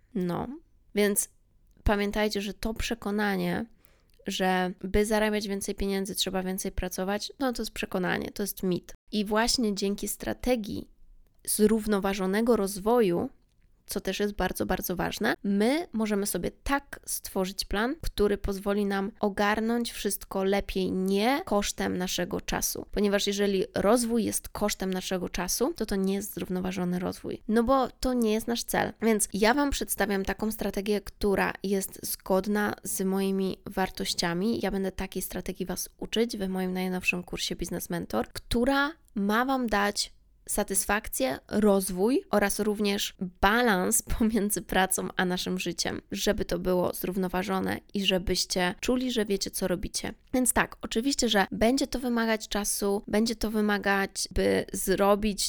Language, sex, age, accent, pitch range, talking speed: Polish, female, 20-39, native, 190-220 Hz, 140 wpm